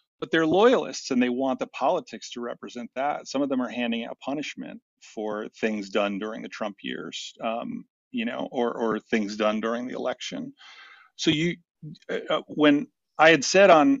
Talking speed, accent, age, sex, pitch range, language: 185 wpm, American, 50-69, male, 110-155 Hz, English